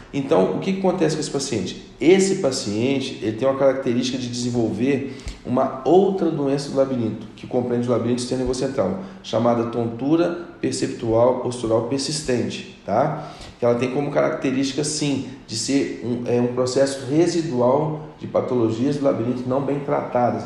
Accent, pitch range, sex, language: Brazilian, 120-140 Hz, male, Portuguese